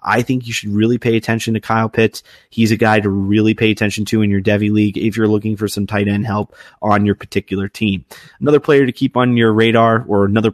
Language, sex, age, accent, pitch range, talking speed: English, male, 30-49, American, 105-120 Hz, 245 wpm